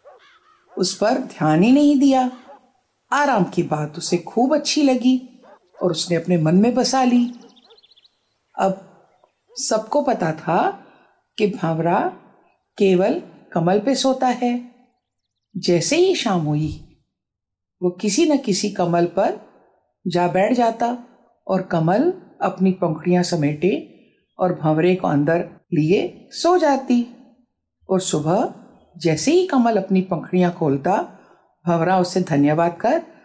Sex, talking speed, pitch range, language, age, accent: female, 125 wpm, 175-260 Hz, Hindi, 50-69, native